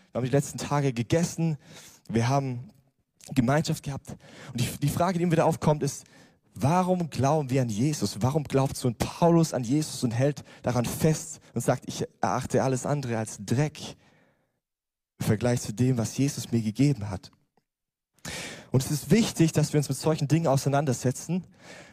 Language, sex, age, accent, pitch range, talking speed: German, male, 20-39, German, 125-155 Hz, 170 wpm